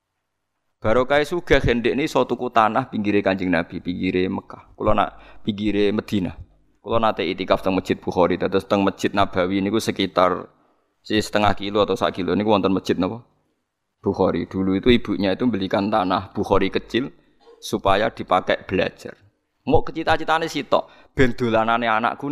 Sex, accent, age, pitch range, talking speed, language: male, native, 20-39, 95-120 Hz, 135 wpm, Indonesian